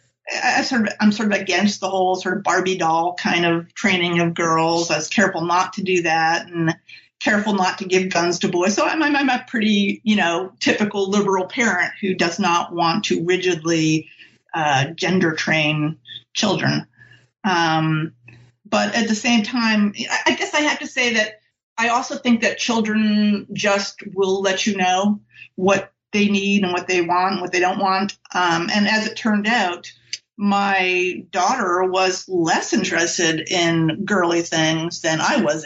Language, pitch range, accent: English, 165-205 Hz, American